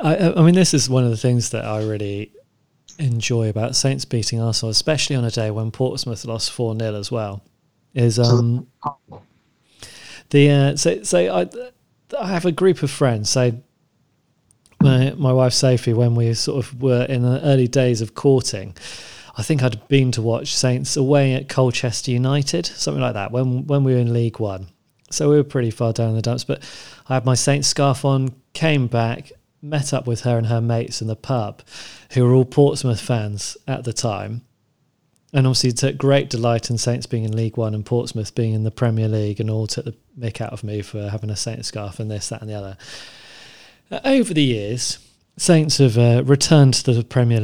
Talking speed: 205 wpm